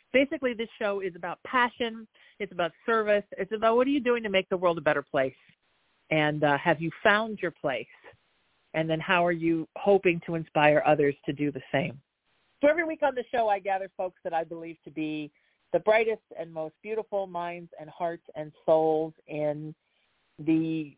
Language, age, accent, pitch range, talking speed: English, 40-59, American, 160-225 Hz, 195 wpm